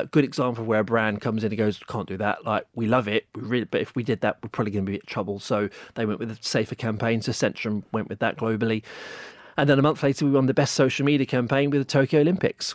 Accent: British